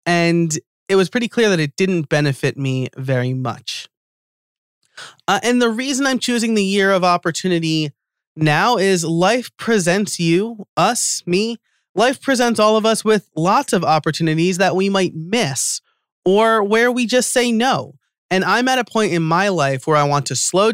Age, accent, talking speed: 30-49, American, 175 wpm